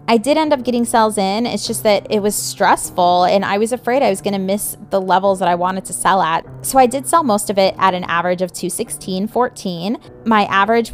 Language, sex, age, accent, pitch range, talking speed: English, female, 20-39, American, 185-225 Hz, 235 wpm